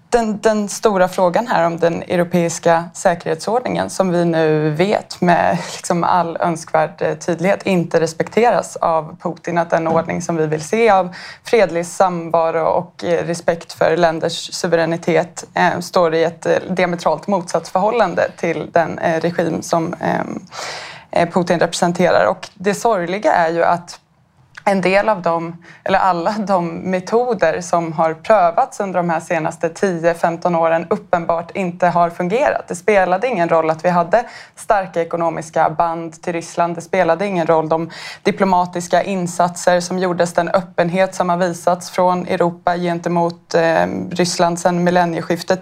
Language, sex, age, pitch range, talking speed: Swedish, female, 20-39, 170-185 Hz, 145 wpm